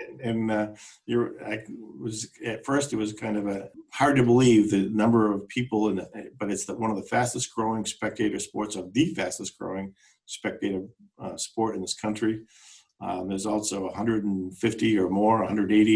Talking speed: 180 wpm